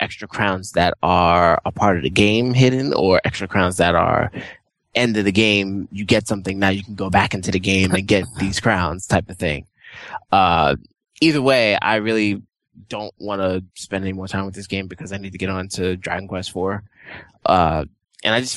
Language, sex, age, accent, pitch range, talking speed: English, male, 20-39, American, 95-115 Hz, 210 wpm